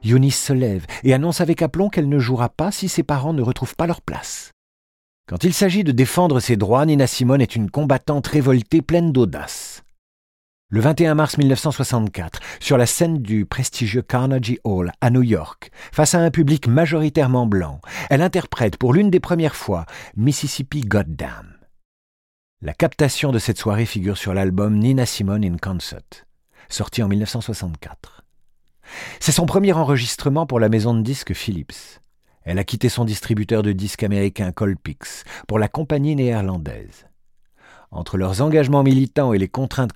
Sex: male